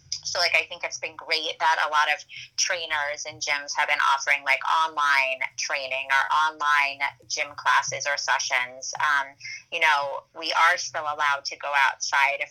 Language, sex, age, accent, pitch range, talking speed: English, female, 20-39, American, 140-170 Hz, 175 wpm